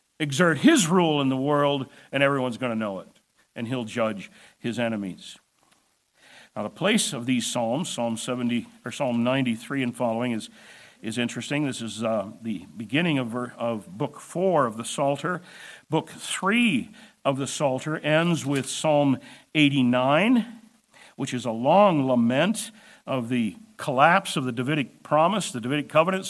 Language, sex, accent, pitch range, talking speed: English, male, American, 125-180 Hz, 155 wpm